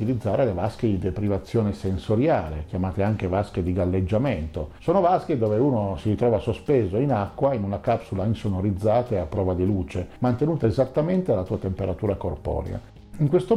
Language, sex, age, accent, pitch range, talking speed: Italian, male, 50-69, native, 95-130 Hz, 165 wpm